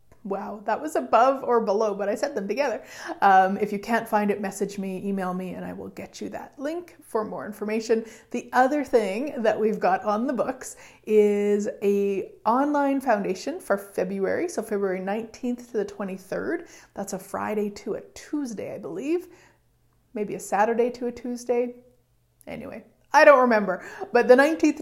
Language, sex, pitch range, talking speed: English, female, 200-250 Hz, 175 wpm